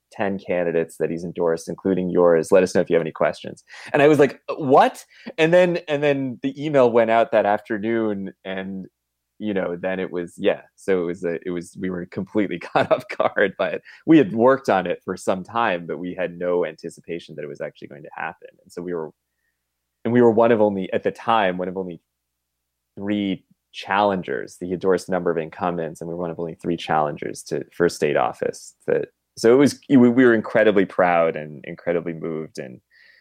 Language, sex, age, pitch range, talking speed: English, male, 20-39, 80-105 Hz, 210 wpm